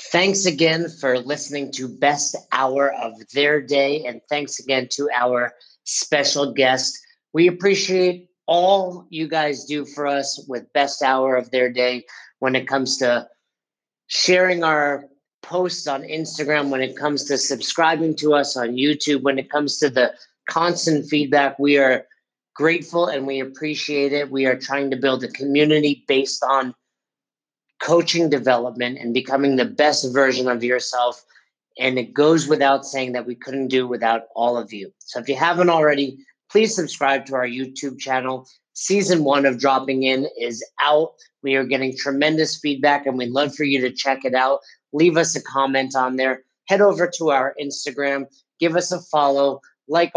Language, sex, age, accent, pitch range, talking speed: English, male, 50-69, American, 130-155 Hz, 170 wpm